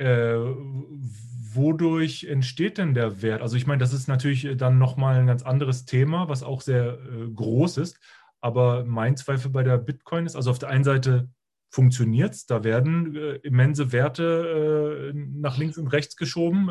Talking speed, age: 175 wpm, 30-49